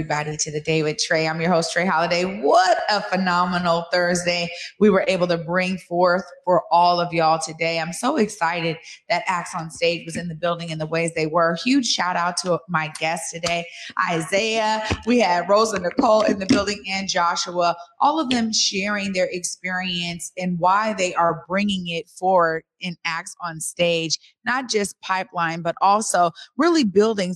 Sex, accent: female, American